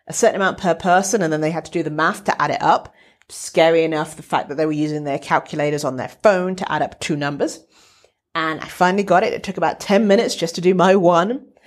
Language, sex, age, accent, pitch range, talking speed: English, female, 40-59, British, 160-215 Hz, 255 wpm